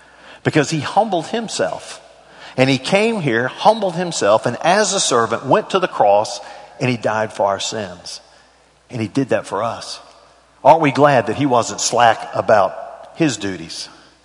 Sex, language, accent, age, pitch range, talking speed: male, English, American, 50-69, 115-145 Hz, 170 wpm